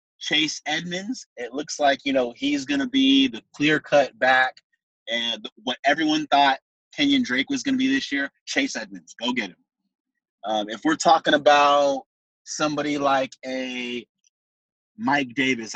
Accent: American